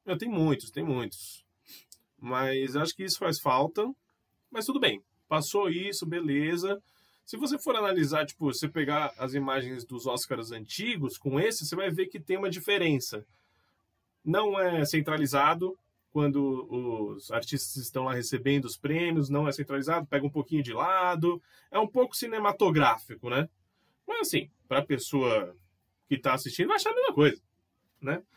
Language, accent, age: Portuguese, Brazilian, 20-39